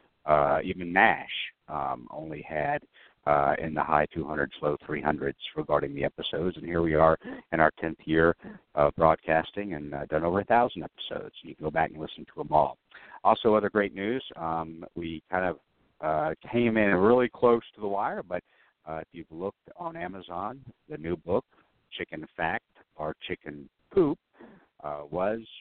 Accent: American